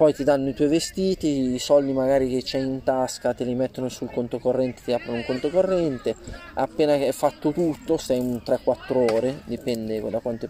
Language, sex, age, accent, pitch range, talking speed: Italian, male, 20-39, native, 115-140 Hz, 195 wpm